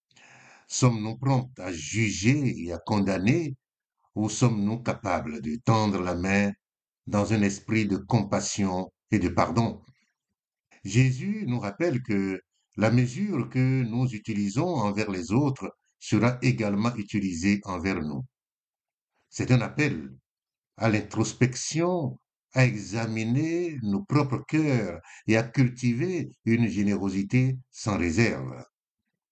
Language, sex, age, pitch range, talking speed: French, male, 60-79, 100-130 Hz, 115 wpm